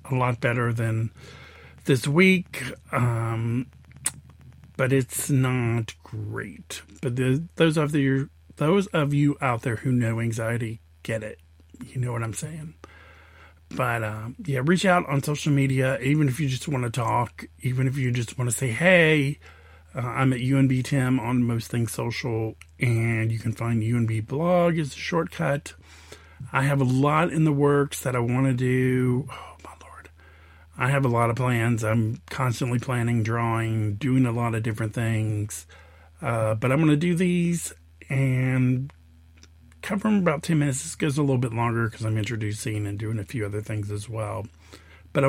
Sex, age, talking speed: male, 50-69, 175 wpm